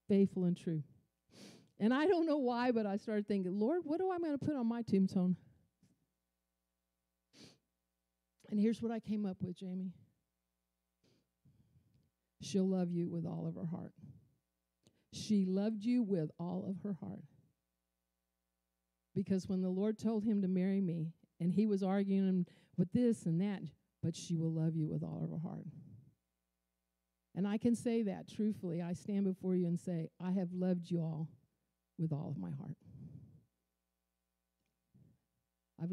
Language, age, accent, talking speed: English, 50-69, American, 160 wpm